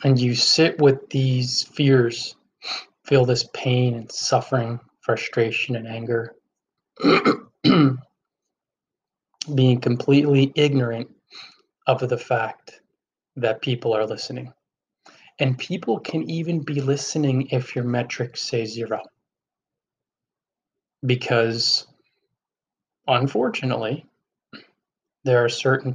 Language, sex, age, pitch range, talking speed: English, male, 20-39, 120-140 Hz, 90 wpm